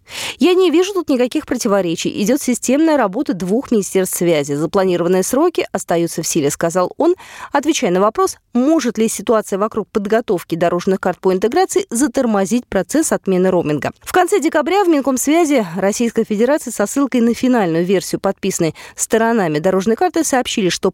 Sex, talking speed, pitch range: female, 150 wpm, 185-290 Hz